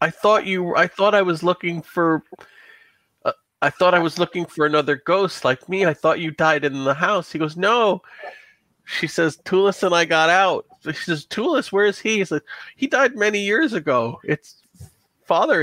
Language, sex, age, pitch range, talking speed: English, male, 40-59, 125-170 Hz, 200 wpm